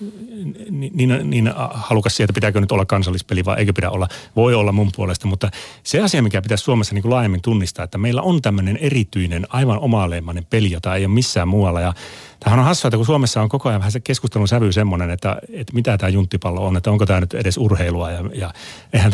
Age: 30-49